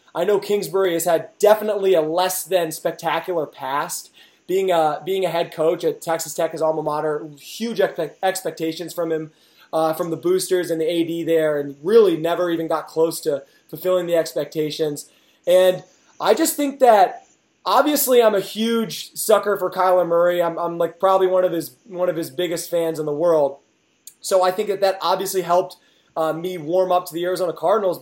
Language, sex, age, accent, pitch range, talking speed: English, male, 20-39, American, 160-200 Hz, 190 wpm